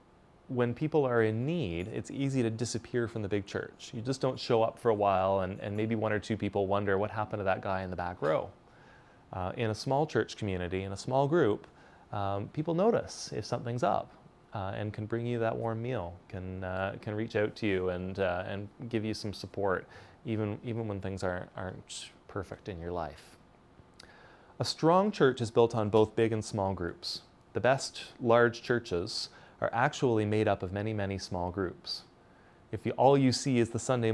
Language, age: English, 20-39